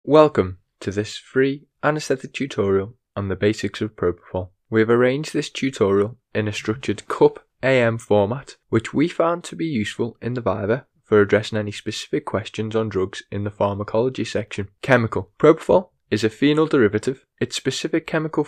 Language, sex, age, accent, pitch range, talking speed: English, male, 10-29, British, 105-135 Hz, 165 wpm